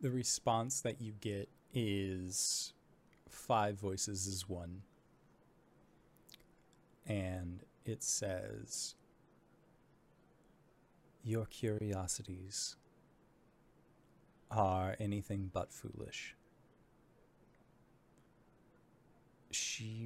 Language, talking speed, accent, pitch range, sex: English, 60 wpm, American, 95-110 Hz, male